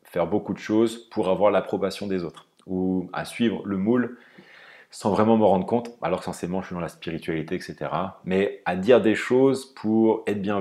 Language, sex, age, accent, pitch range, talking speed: French, male, 30-49, French, 85-105 Hz, 205 wpm